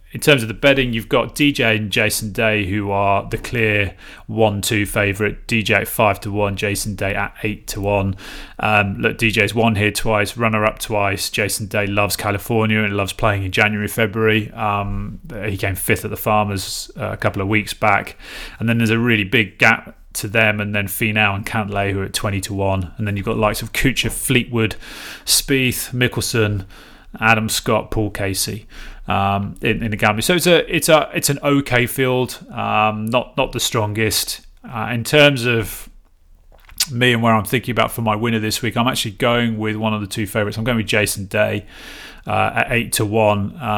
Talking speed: 200 wpm